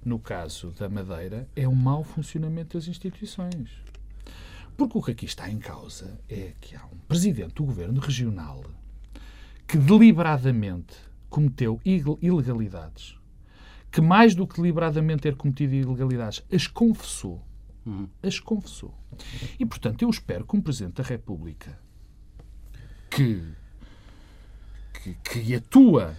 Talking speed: 125 wpm